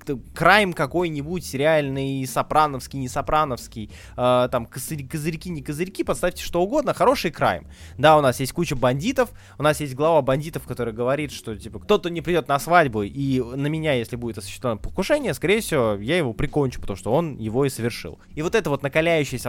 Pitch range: 125-180 Hz